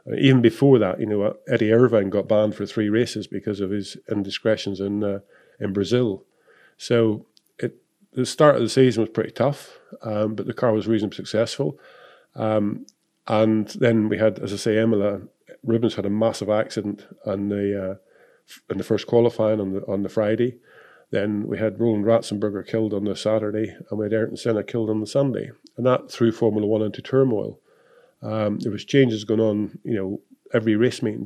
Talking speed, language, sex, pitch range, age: 190 wpm, English, male, 105-120 Hz, 50-69